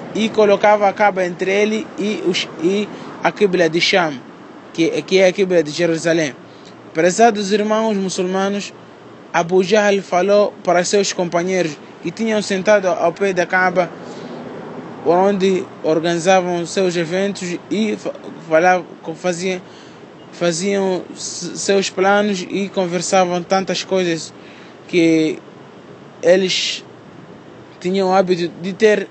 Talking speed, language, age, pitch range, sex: 120 wpm, Portuguese, 20-39, 175-200 Hz, male